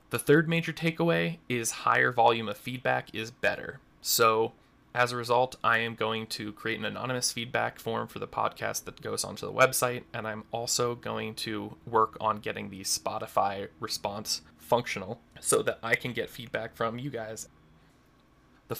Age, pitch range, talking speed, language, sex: 20-39, 110-125 Hz, 170 wpm, English, male